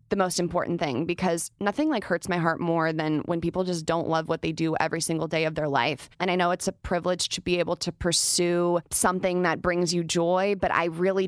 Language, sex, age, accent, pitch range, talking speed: English, female, 20-39, American, 170-205 Hz, 240 wpm